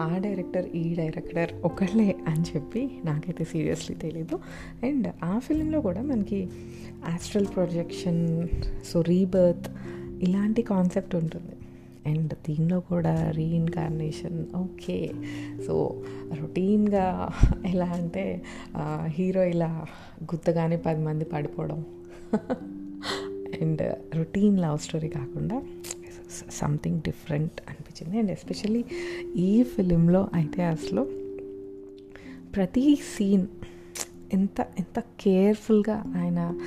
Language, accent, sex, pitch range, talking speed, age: Telugu, native, female, 150-190 Hz, 95 wpm, 30-49